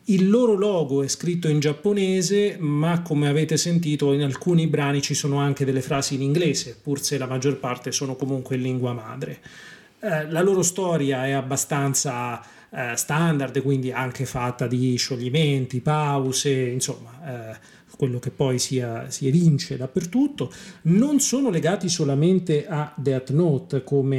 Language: Italian